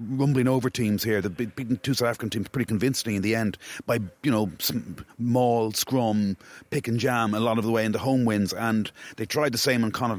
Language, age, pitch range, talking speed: English, 40-59, 110-130 Hz, 235 wpm